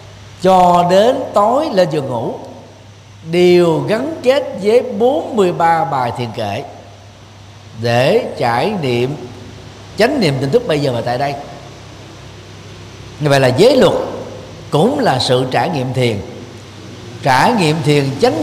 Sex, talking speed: male, 135 wpm